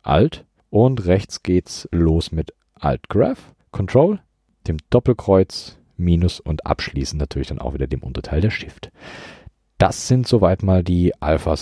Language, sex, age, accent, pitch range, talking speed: German, male, 40-59, German, 80-105 Hz, 140 wpm